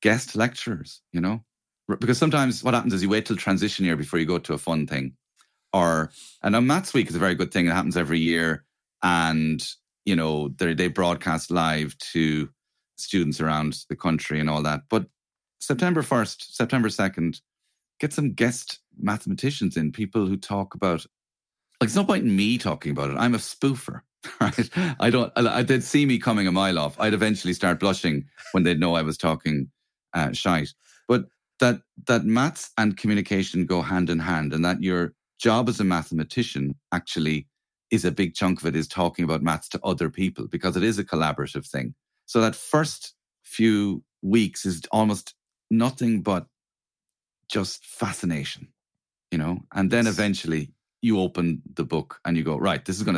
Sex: male